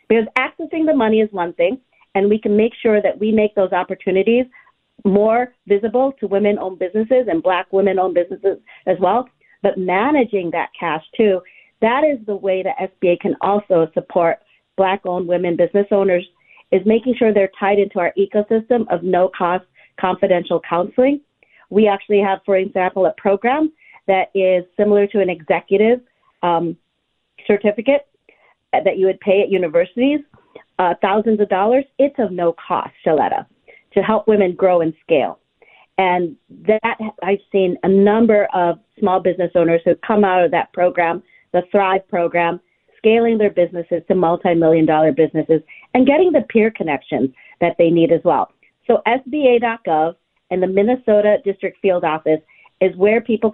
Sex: female